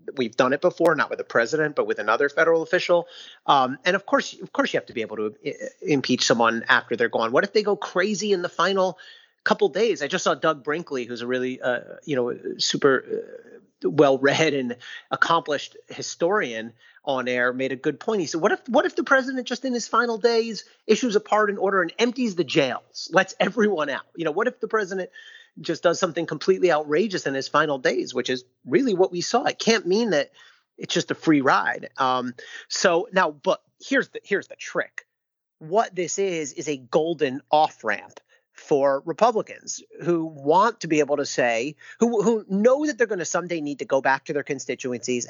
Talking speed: 210 wpm